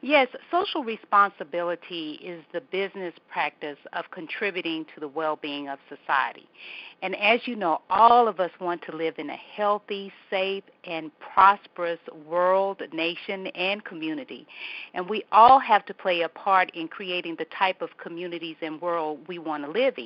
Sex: female